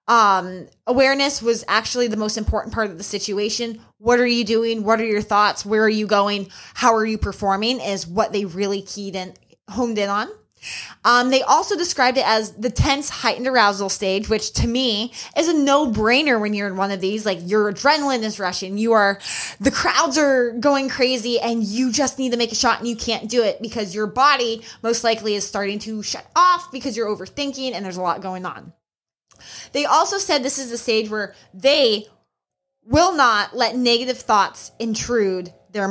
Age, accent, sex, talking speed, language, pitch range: 20-39, American, female, 200 wpm, English, 205-255 Hz